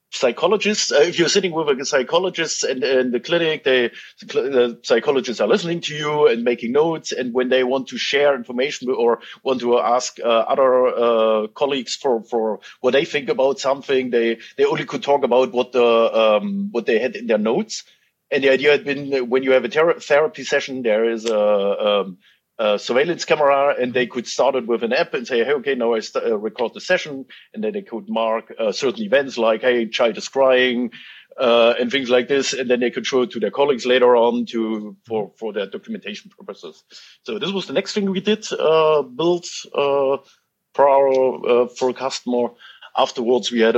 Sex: male